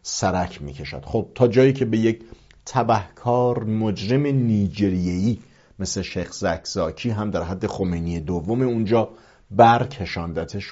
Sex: male